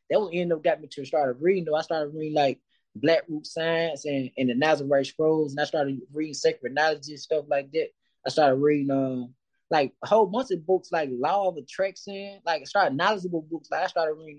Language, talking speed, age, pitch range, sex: English, 230 wpm, 20-39, 150-180 Hz, male